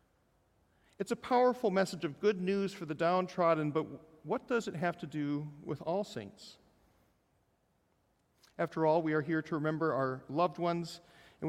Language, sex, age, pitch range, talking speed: English, male, 40-59, 140-180 Hz, 160 wpm